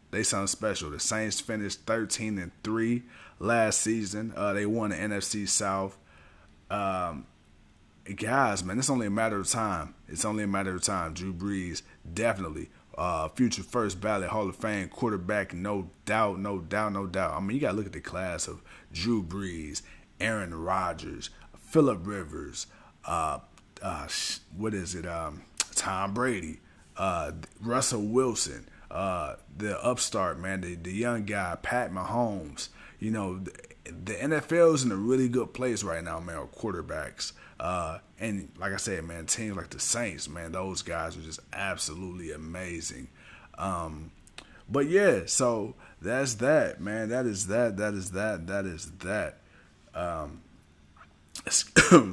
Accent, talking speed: American, 155 wpm